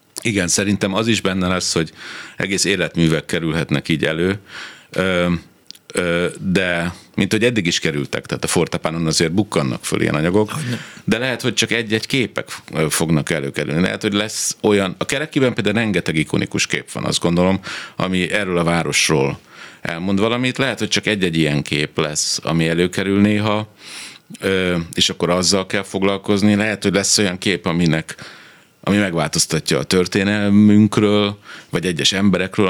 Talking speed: 150 wpm